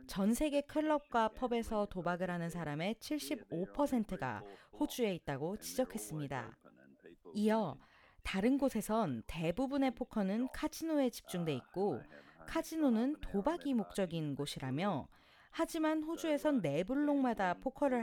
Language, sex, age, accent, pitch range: Korean, female, 40-59, native, 170-275 Hz